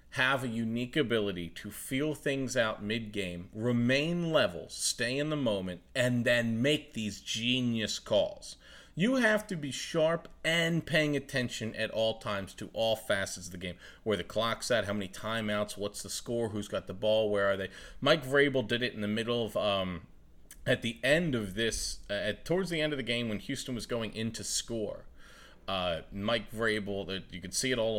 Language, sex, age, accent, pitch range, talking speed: English, male, 40-59, American, 100-135 Hz, 200 wpm